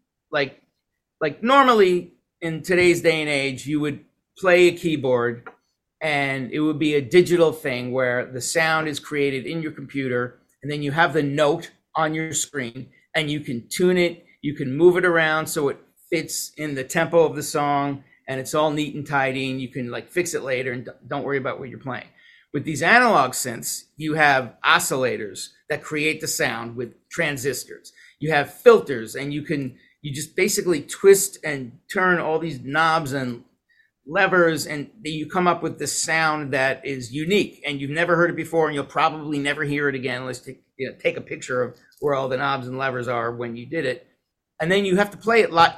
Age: 40-59